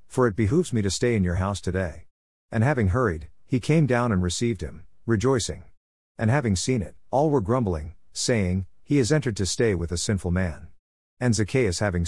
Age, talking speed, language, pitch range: 50-69, 200 wpm, English, 90-120 Hz